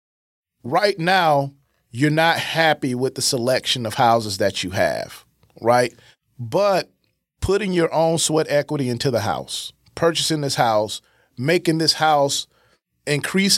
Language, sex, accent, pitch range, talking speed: English, male, American, 125-165 Hz, 135 wpm